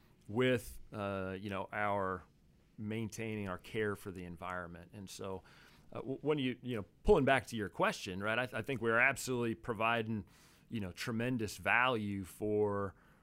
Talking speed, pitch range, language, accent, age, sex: 165 wpm, 100-120 Hz, English, American, 40-59, male